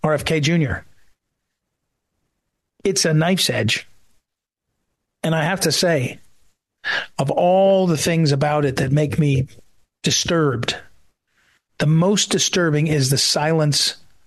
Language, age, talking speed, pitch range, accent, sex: English, 40-59, 115 wpm, 140-170 Hz, American, male